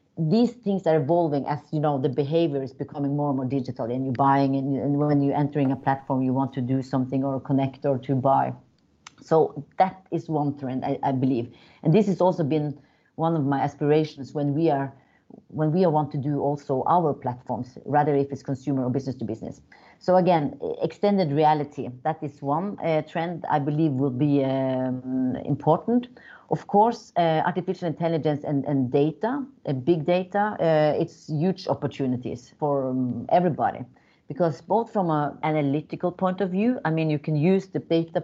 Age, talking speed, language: 40-59, 190 wpm, English